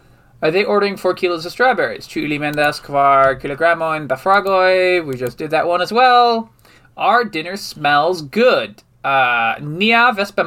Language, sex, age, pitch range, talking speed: English, male, 20-39, 130-195 Hz, 155 wpm